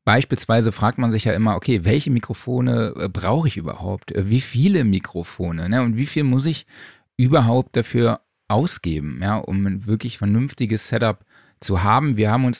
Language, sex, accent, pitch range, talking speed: German, male, German, 100-120 Hz, 170 wpm